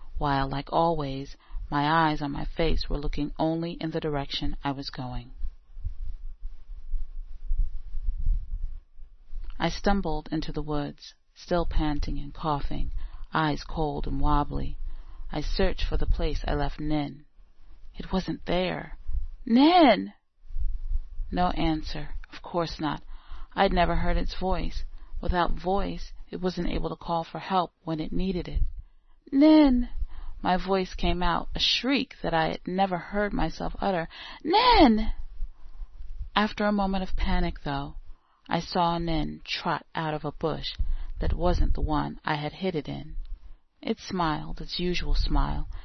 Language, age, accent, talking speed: English, 40-59, American, 140 wpm